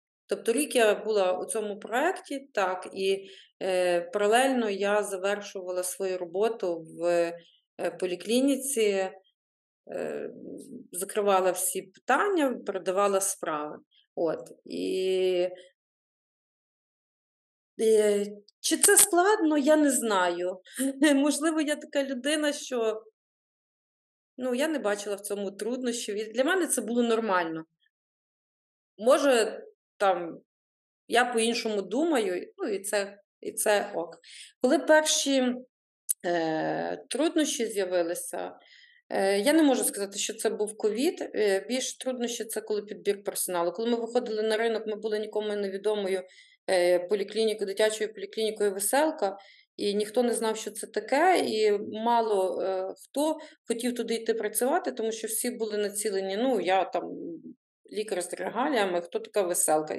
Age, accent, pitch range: 30-49, native, 195-255 Hz